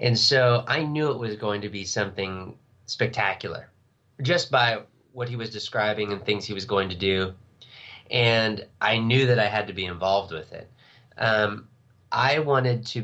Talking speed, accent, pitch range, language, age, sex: 180 wpm, American, 110-125 Hz, English, 30-49, male